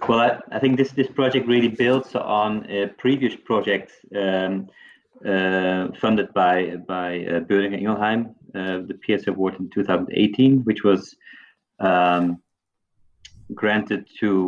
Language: English